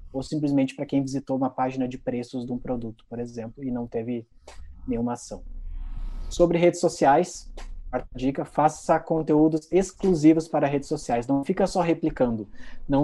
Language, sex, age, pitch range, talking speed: Portuguese, male, 20-39, 130-160 Hz, 160 wpm